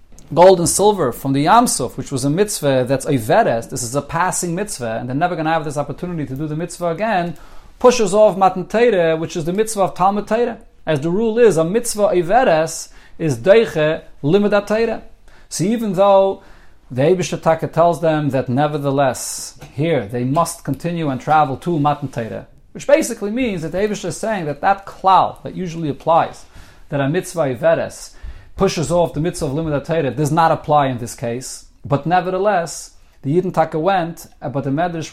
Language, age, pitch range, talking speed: English, 40-59, 145-190 Hz, 180 wpm